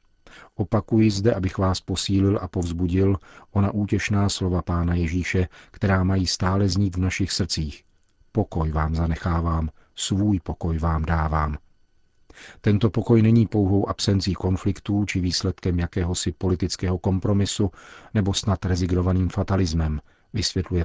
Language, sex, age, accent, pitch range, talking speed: Czech, male, 40-59, native, 90-100 Hz, 120 wpm